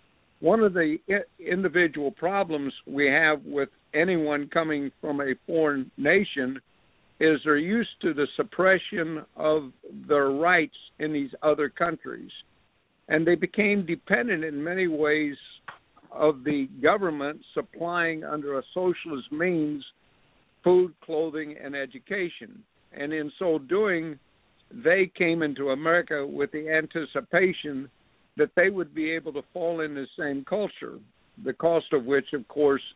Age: 60-79